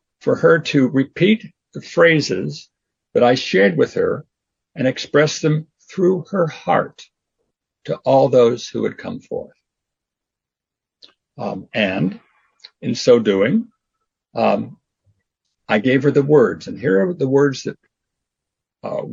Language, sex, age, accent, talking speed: English, male, 60-79, American, 130 wpm